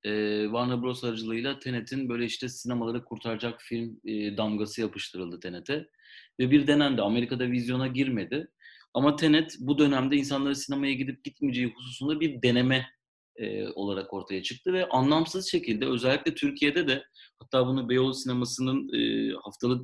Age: 40-59